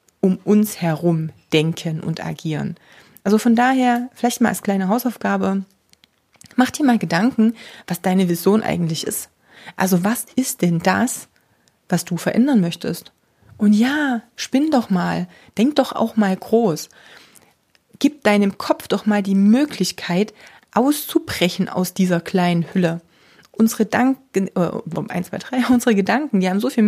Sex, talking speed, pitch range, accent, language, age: female, 140 wpm, 180-235 Hz, German, German, 30-49